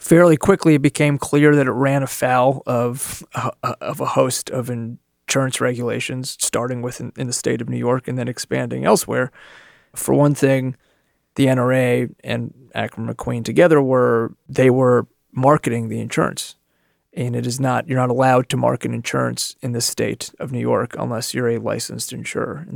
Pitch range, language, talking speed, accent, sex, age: 120-135 Hz, English, 175 wpm, American, male, 30-49